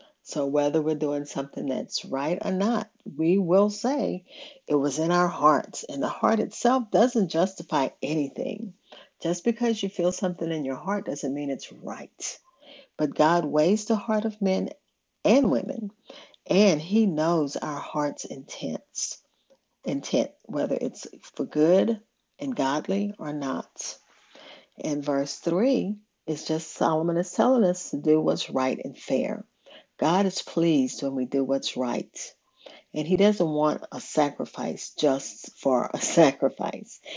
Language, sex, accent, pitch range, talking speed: English, female, American, 150-210 Hz, 150 wpm